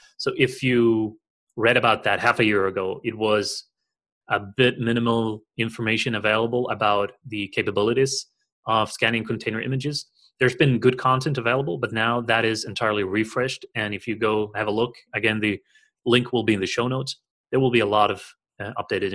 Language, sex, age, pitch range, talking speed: English, male, 30-49, 105-125 Hz, 185 wpm